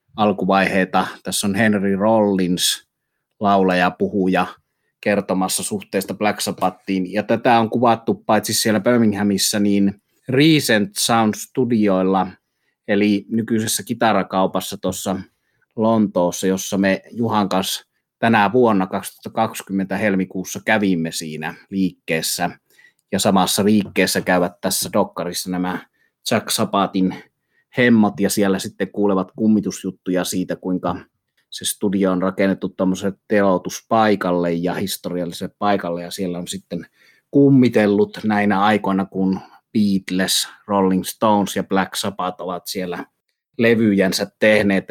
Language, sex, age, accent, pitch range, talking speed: Finnish, male, 30-49, native, 95-105 Hz, 110 wpm